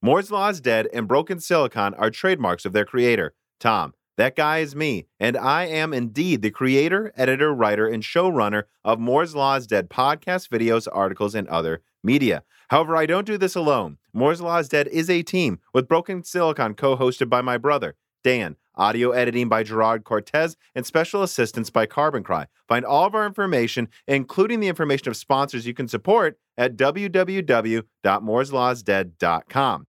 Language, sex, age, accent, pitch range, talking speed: English, male, 30-49, American, 110-165 Hz, 170 wpm